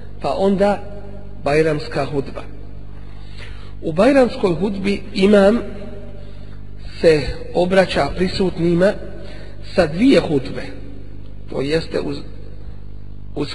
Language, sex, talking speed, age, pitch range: English, male, 70 wpm, 50-69, 105-175 Hz